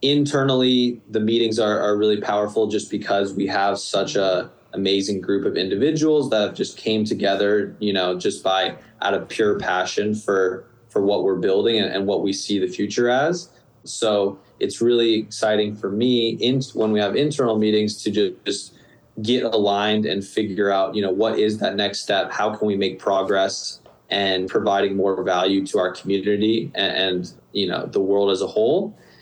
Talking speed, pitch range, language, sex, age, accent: 185 wpm, 100-115 Hz, English, male, 20-39, American